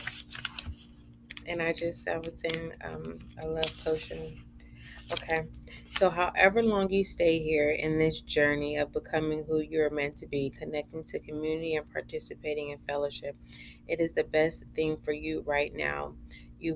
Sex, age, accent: female, 20-39, American